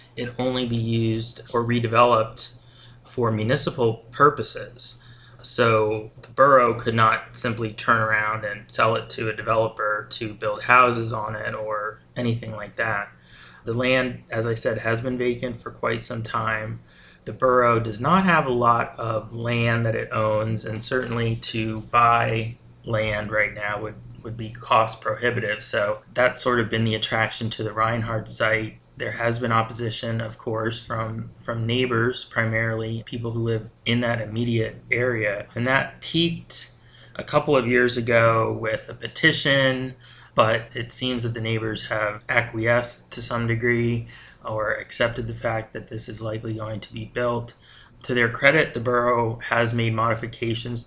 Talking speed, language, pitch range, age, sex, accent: 165 wpm, English, 110-120 Hz, 20-39, male, American